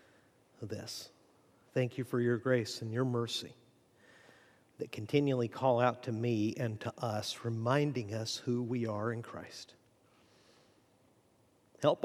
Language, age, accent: English, 50-69, American